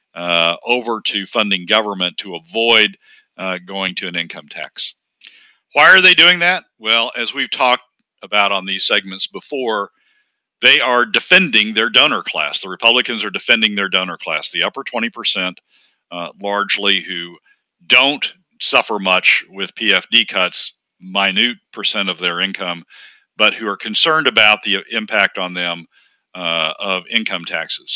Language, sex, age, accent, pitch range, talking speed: English, male, 60-79, American, 95-120 Hz, 150 wpm